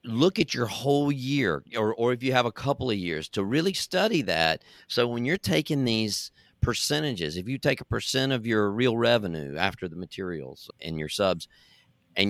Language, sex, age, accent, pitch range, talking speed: English, male, 40-59, American, 100-140 Hz, 195 wpm